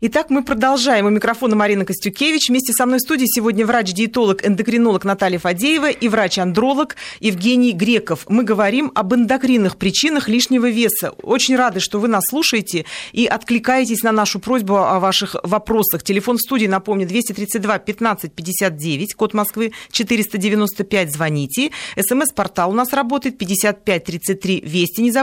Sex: female